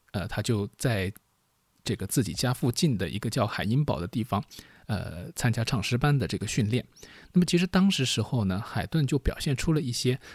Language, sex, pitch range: Chinese, male, 110-145 Hz